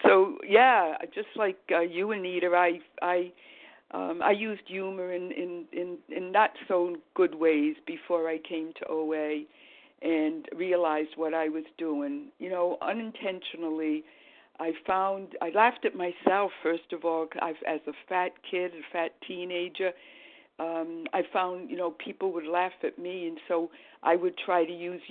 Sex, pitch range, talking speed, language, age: female, 165-195 Hz, 170 wpm, English, 60-79